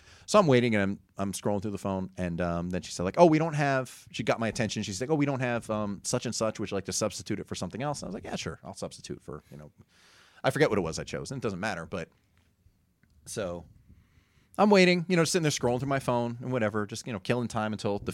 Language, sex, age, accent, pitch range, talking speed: English, male, 30-49, American, 100-145 Hz, 280 wpm